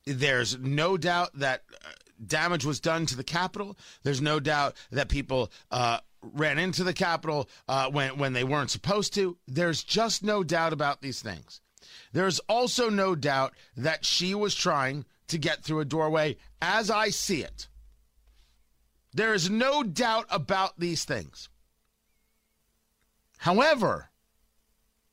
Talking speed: 140 wpm